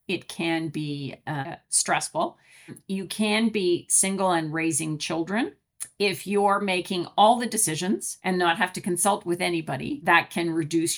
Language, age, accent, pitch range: English, 50-69, American, 160-195 Hz